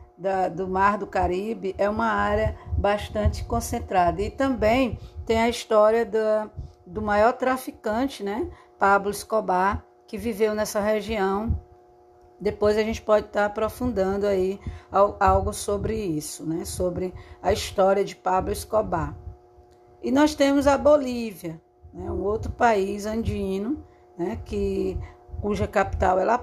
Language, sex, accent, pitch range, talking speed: Portuguese, female, Brazilian, 175-215 Hz, 135 wpm